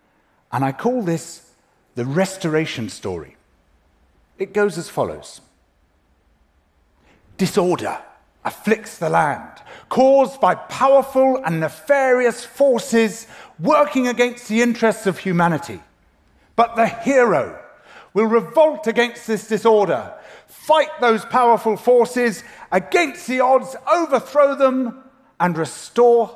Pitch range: 180-270 Hz